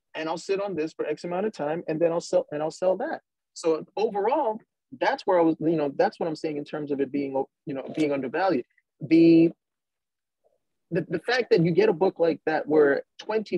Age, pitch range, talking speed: 30-49, 145-195 Hz, 230 wpm